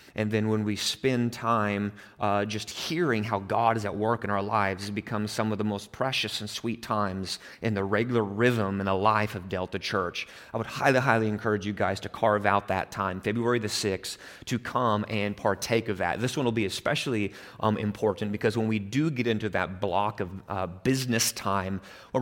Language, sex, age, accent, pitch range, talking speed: English, male, 30-49, American, 100-115 Hz, 210 wpm